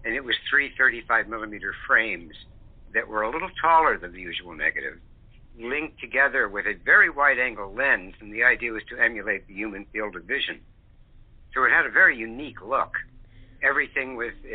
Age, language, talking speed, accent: 60-79, English, 180 wpm, American